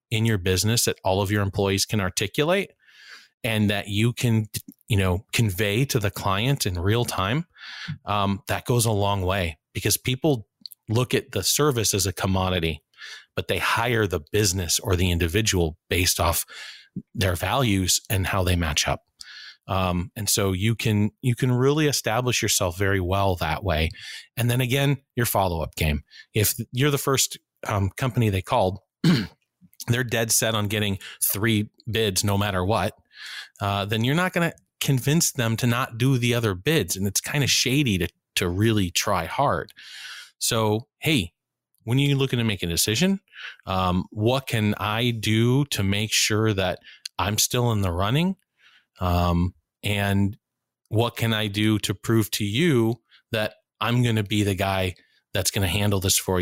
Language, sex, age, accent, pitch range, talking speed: English, male, 30-49, American, 95-120 Hz, 175 wpm